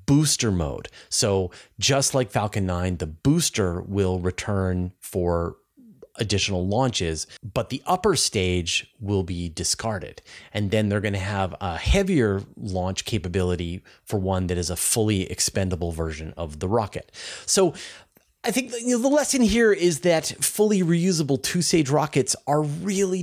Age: 30-49